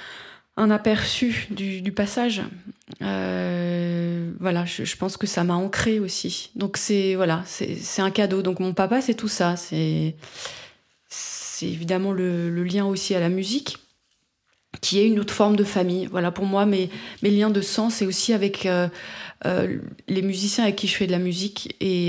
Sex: female